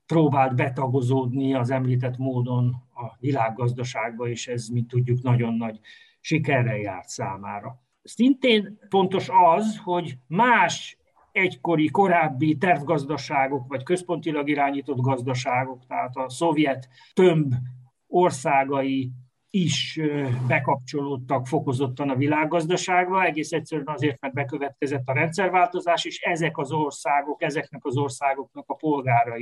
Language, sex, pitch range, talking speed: Hungarian, male, 130-170 Hz, 110 wpm